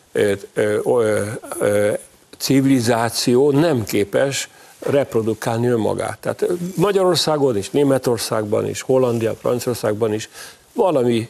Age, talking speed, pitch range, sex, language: 50-69, 75 wpm, 110-135 Hz, male, Hungarian